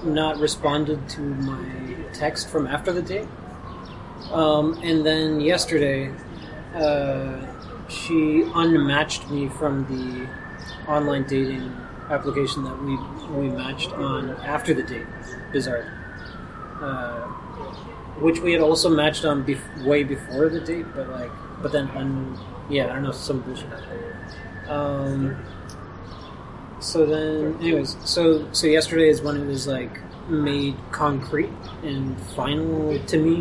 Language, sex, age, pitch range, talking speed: English, male, 20-39, 130-155 Hz, 130 wpm